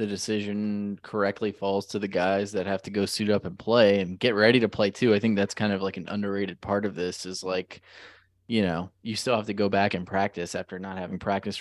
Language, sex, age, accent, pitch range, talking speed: English, male, 20-39, American, 95-105 Hz, 250 wpm